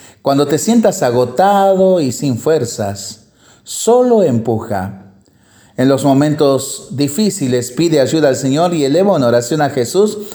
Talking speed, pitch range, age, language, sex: 135 wpm, 115-150 Hz, 40-59, Spanish, male